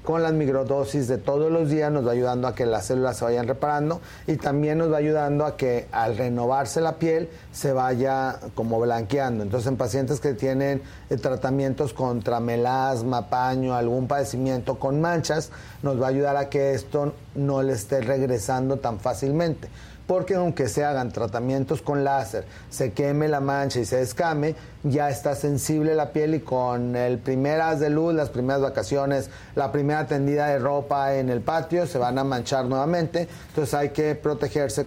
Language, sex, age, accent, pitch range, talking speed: Spanish, male, 40-59, Mexican, 130-150 Hz, 180 wpm